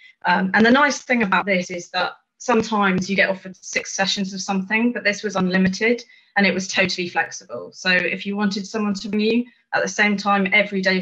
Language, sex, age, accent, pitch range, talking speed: English, female, 30-49, British, 185-225 Hz, 220 wpm